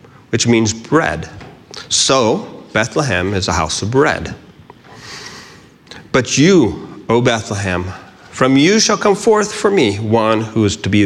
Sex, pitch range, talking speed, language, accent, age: male, 100-125 Hz, 140 wpm, English, American, 40-59